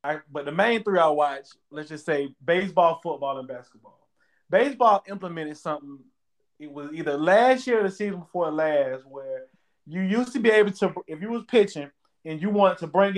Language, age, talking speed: English, 20-39, 195 wpm